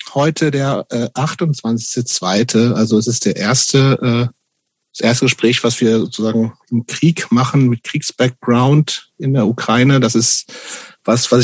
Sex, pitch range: male, 115-130 Hz